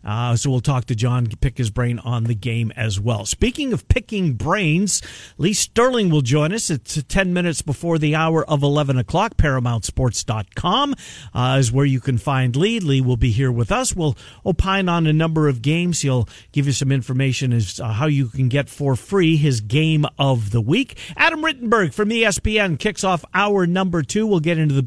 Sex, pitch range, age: male, 130-175 Hz, 50-69